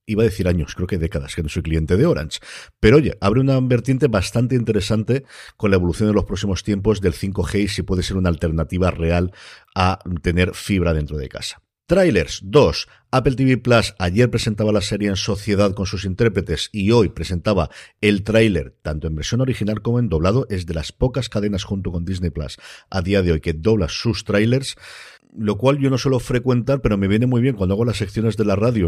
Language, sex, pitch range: Spanish, male, 90-115 Hz